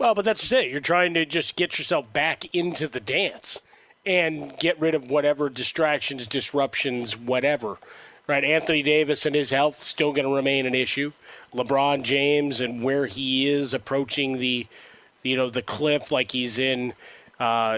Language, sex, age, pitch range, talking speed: English, male, 30-49, 130-155 Hz, 170 wpm